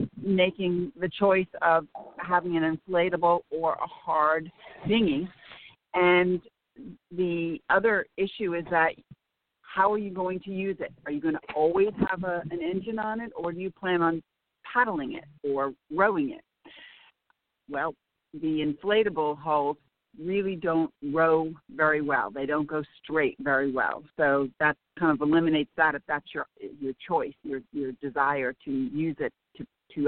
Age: 50-69